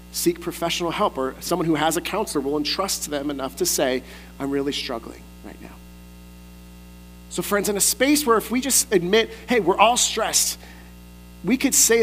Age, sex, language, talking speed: 40-59, male, English, 185 wpm